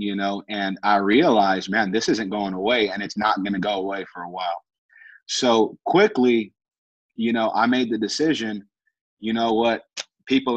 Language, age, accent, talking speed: English, 30-49, American, 180 wpm